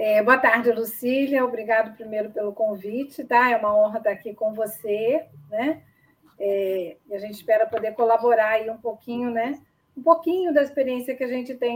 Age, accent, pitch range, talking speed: 40-59, Brazilian, 225-280 Hz, 185 wpm